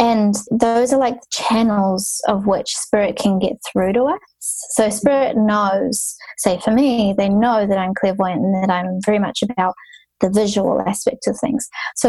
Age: 20-39